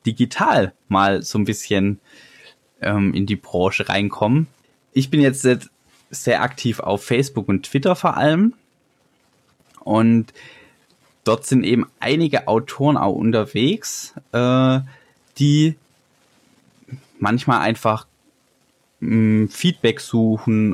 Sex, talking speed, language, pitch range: male, 105 wpm, German, 105-135 Hz